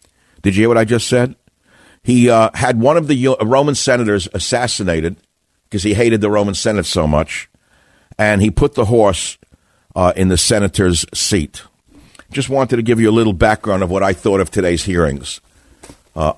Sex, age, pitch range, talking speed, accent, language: male, 60-79, 95-120 Hz, 185 wpm, American, English